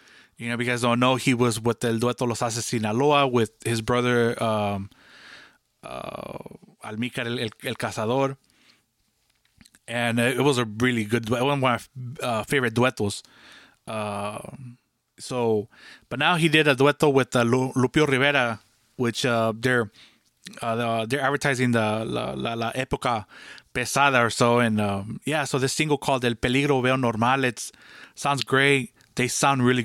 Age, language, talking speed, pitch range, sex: 20-39, English, 160 wpm, 115-135 Hz, male